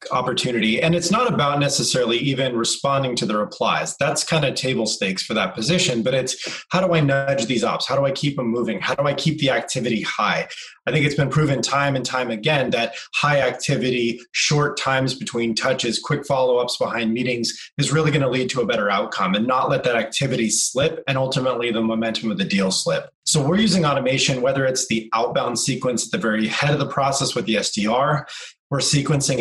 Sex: male